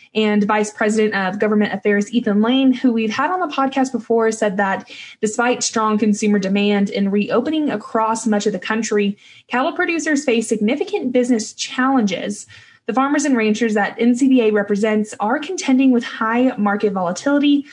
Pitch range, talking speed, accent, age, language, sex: 210-250 Hz, 160 wpm, American, 20-39, English, female